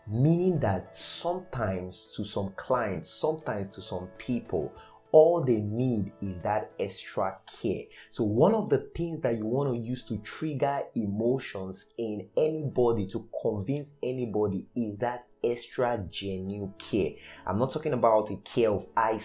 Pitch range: 100-130 Hz